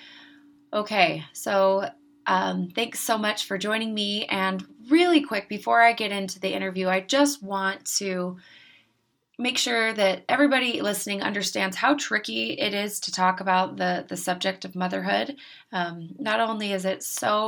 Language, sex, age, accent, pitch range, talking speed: English, female, 20-39, American, 185-215 Hz, 160 wpm